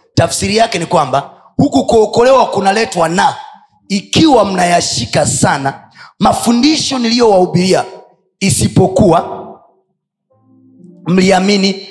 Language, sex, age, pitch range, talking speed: Swahili, male, 30-49, 150-225 Hz, 75 wpm